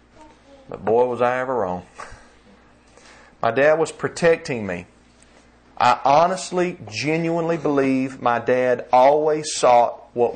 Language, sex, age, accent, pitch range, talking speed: English, male, 40-59, American, 110-140 Hz, 115 wpm